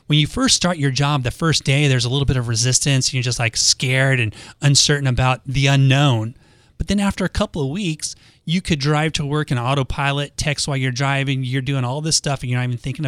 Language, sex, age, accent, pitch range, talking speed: English, male, 30-49, American, 125-160 Hz, 240 wpm